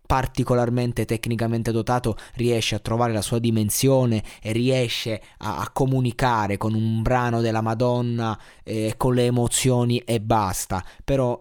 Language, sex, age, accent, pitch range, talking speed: Italian, male, 20-39, native, 105-125 Hz, 140 wpm